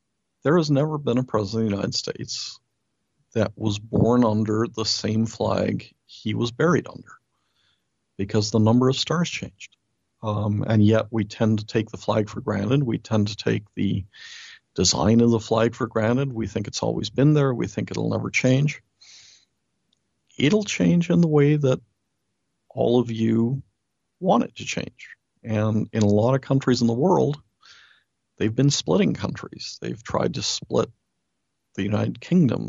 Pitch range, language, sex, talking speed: 105-125 Hz, English, male, 170 wpm